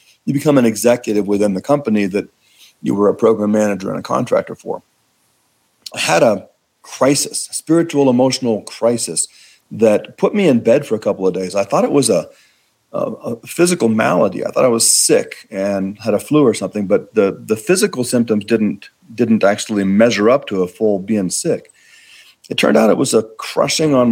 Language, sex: English, male